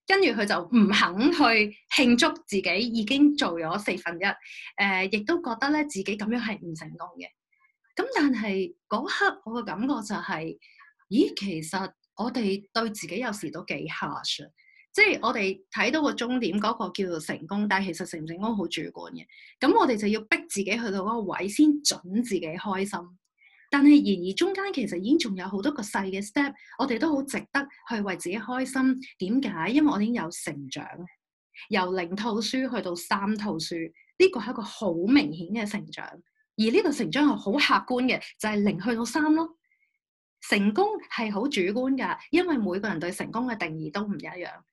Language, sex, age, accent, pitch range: Chinese, female, 30-49, native, 190-280 Hz